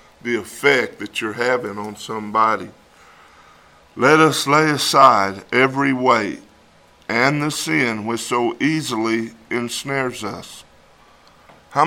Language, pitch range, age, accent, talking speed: English, 120-160 Hz, 50-69, American, 110 wpm